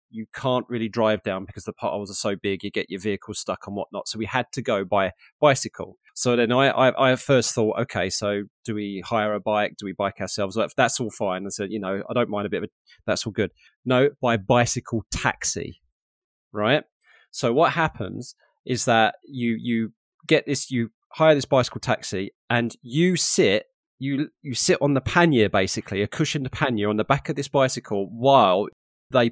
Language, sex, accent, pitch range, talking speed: English, male, British, 110-150 Hz, 205 wpm